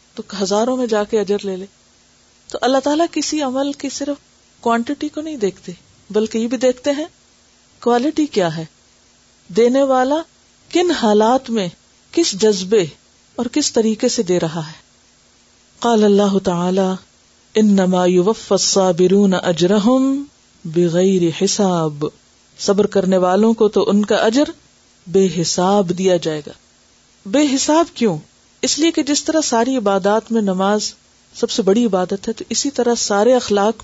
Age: 50-69